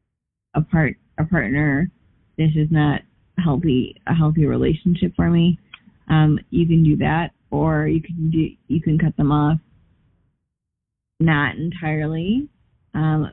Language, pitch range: English, 150-165 Hz